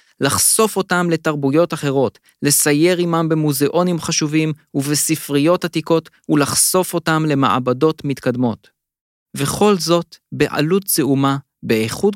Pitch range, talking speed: 130-165 Hz, 95 wpm